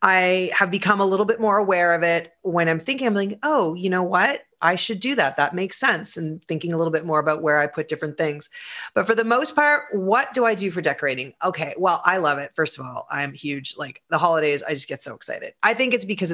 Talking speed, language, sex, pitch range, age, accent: 260 wpm, English, female, 150-200 Hz, 30-49, American